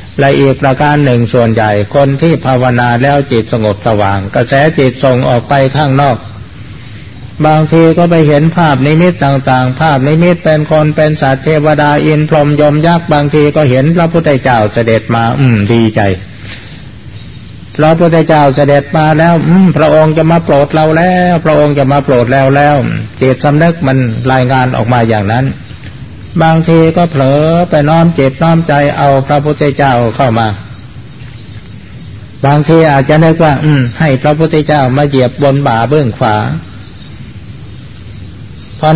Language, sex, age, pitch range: Thai, male, 60-79, 115-150 Hz